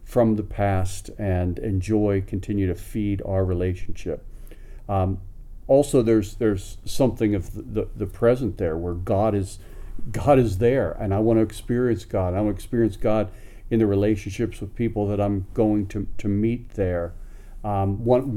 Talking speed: 170 wpm